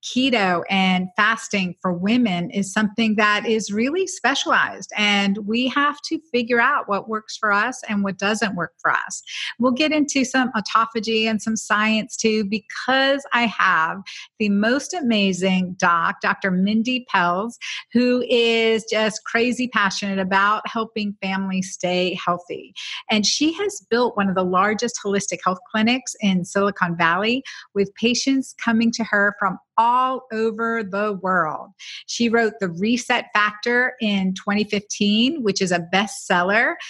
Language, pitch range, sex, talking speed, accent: English, 195-235 Hz, female, 150 wpm, American